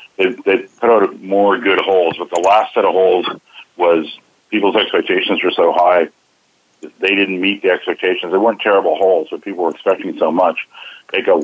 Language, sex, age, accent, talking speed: English, male, 50-69, American, 185 wpm